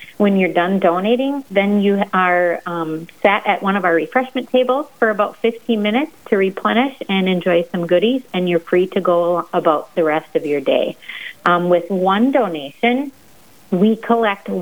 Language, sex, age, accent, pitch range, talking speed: English, female, 30-49, American, 165-195 Hz, 170 wpm